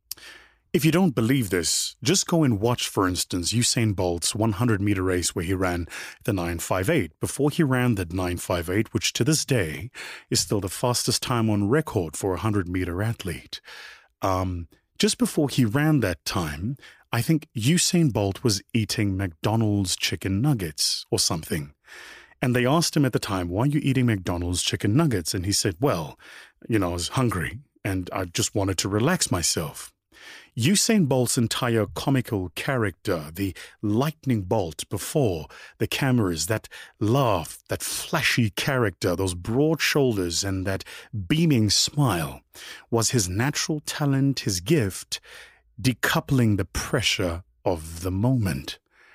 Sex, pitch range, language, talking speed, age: male, 95-135 Hz, English, 150 wpm, 30-49